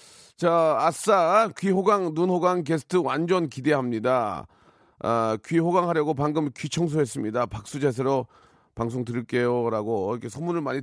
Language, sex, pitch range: Korean, male, 130-185 Hz